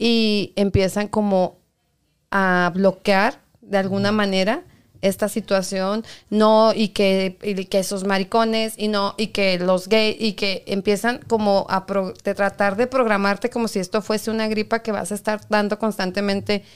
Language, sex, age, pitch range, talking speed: Spanish, female, 40-59, 195-225 Hz, 160 wpm